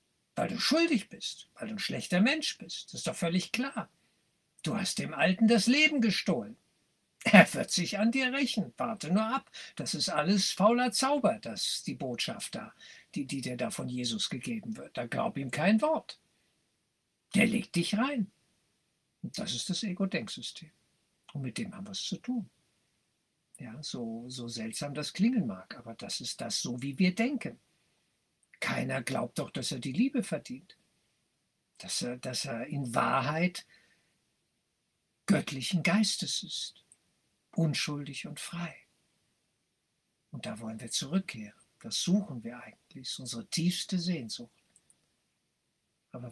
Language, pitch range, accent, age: German, 135-220 Hz, German, 60-79